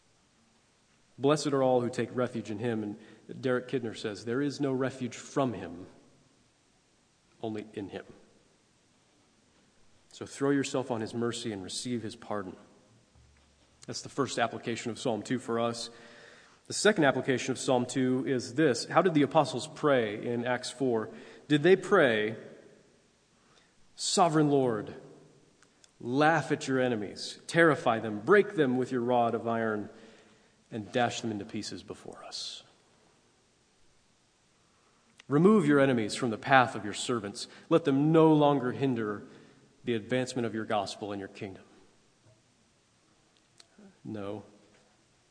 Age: 40-59